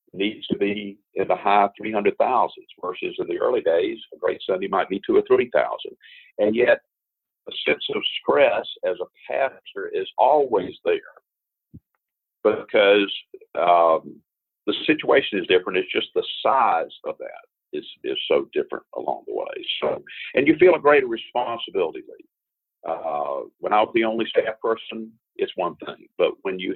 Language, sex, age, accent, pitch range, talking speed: English, male, 50-69, American, 340-460 Hz, 165 wpm